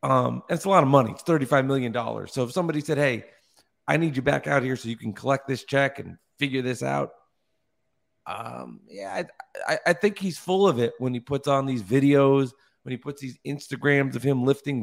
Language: English